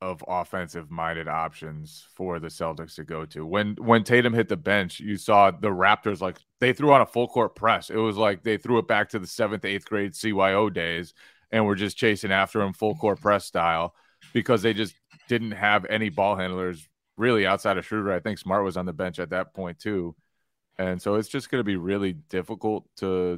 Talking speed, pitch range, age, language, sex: 210 wpm, 90-105 Hz, 30-49, English, male